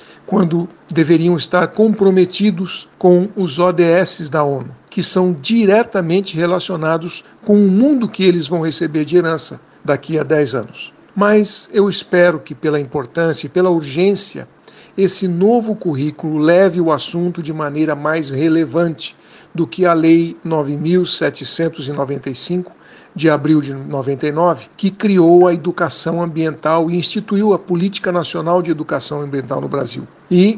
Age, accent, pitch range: 60-79, Brazilian, 160-190 Hz